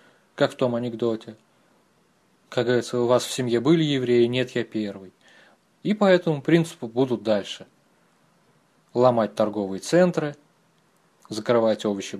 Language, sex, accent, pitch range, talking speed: Russian, male, native, 115-175 Hz, 130 wpm